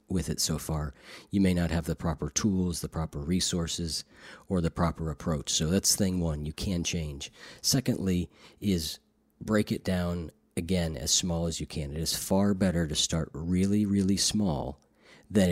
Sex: male